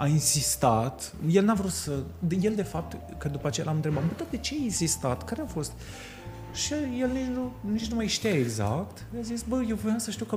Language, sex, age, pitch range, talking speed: Romanian, male, 30-49, 120-155 Hz, 220 wpm